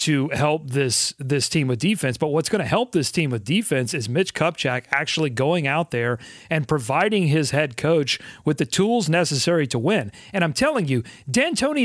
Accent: American